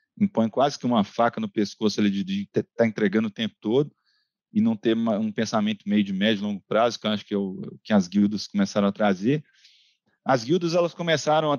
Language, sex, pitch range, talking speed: Portuguese, male, 110-175 Hz, 205 wpm